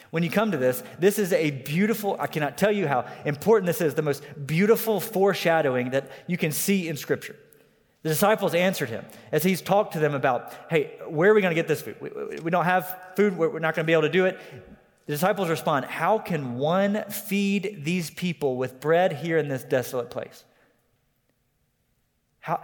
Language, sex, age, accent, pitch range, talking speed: English, male, 30-49, American, 145-200 Hz, 205 wpm